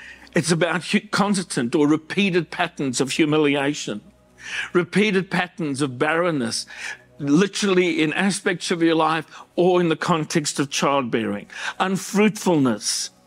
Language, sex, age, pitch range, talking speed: English, male, 60-79, 140-180 Hz, 115 wpm